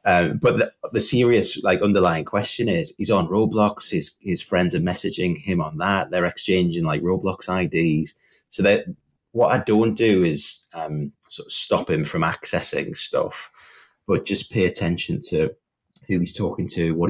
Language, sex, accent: English, male, British